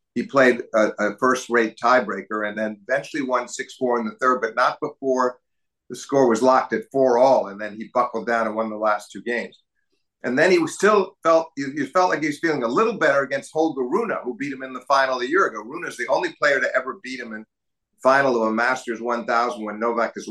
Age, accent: 50-69, American